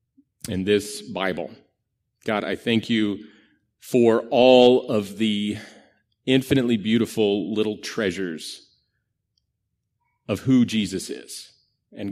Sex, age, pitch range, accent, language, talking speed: male, 30-49, 100-130 Hz, American, English, 100 wpm